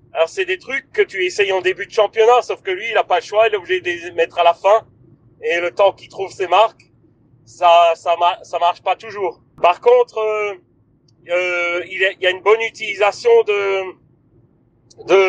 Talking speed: 210 wpm